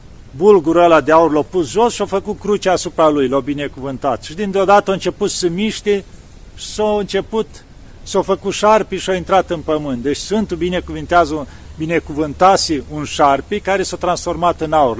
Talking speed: 170 wpm